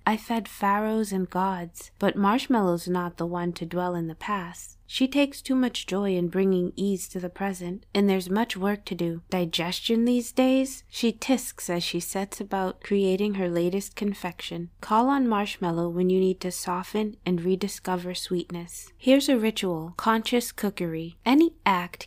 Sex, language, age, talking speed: female, English, 20-39, 170 wpm